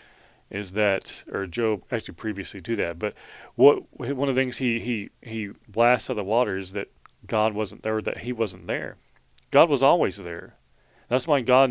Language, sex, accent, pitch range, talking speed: English, male, American, 100-120 Hz, 200 wpm